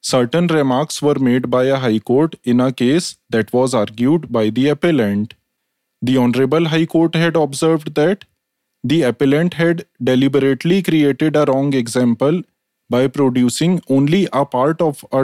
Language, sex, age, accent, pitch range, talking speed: English, male, 20-39, Indian, 125-160 Hz, 155 wpm